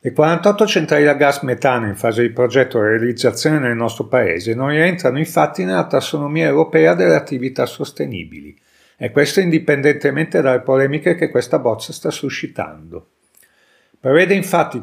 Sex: male